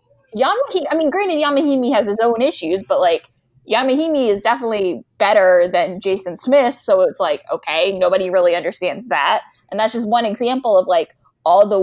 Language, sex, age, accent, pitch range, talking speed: English, female, 10-29, American, 190-265 Hz, 180 wpm